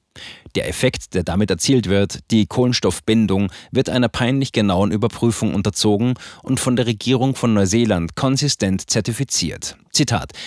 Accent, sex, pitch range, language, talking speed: German, male, 100-125 Hz, German, 130 wpm